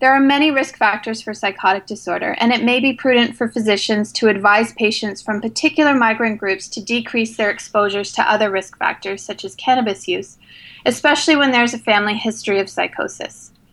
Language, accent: English, American